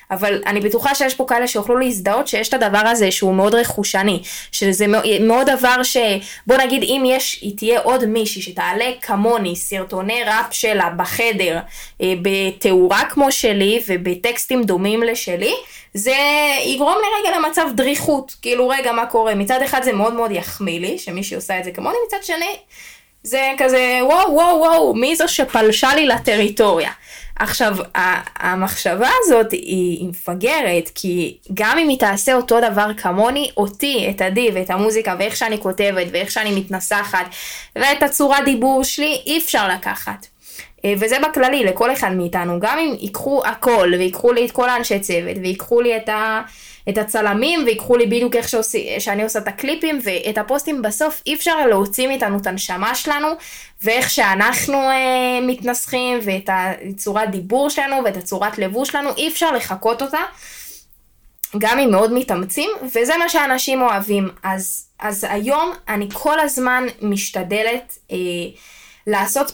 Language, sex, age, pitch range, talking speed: Hebrew, female, 20-39, 200-270 Hz, 150 wpm